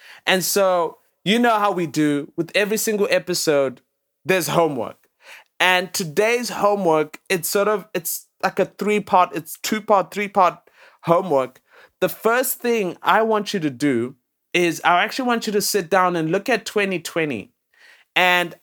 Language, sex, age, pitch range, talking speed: English, male, 30-49, 160-210 Hz, 155 wpm